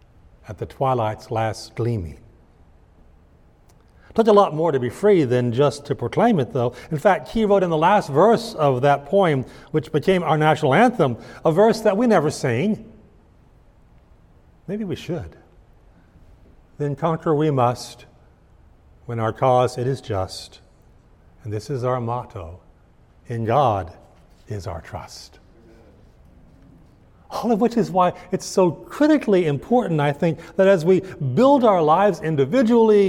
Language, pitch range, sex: English, 120-200 Hz, male